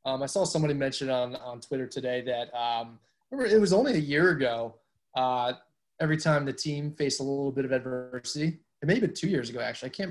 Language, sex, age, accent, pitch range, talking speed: English, male, 20-39, American, 130-155 Hz, 225 wpm